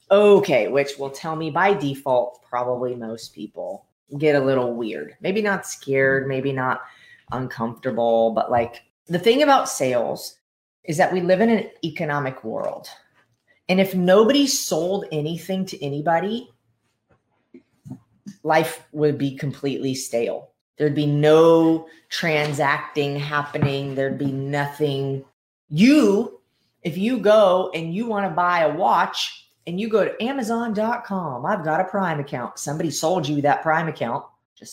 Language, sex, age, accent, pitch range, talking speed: English, female, 30-49, American, 140-210 Hz, 140 wpm